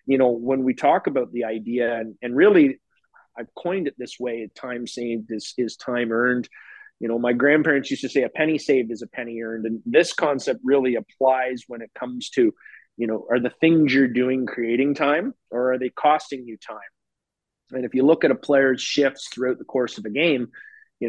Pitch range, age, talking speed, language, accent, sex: 120-145 Hz, 30-49, 215 wpm, English, American, male